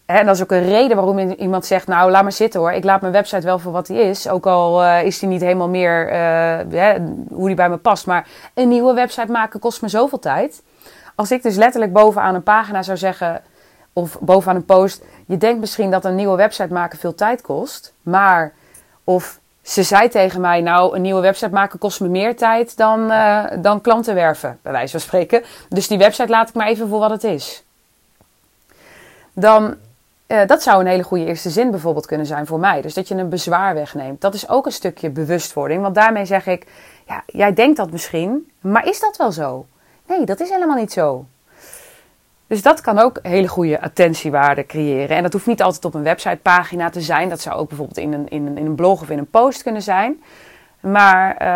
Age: 20-39